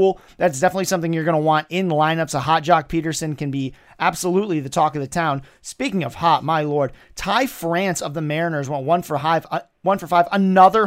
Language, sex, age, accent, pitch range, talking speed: English, male, 30-49, American, 160-205 Hz, 215 wpm